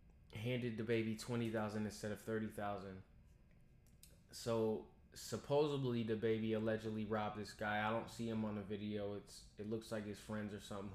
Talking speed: 165 wpm